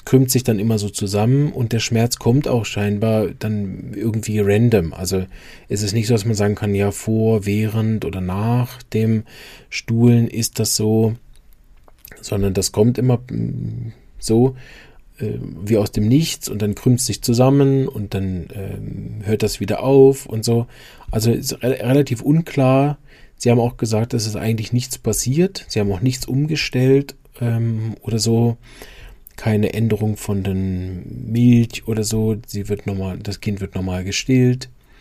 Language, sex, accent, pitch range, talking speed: German, male, German, 100-125 Hz, 160 wpm